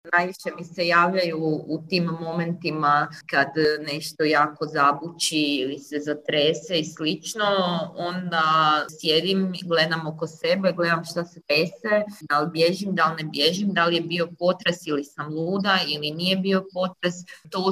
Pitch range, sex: 150-180 Hz, female